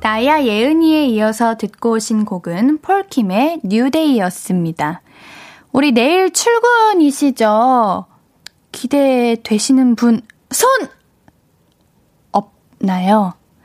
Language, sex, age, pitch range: Korean, female, 20-39, 205-285 Hz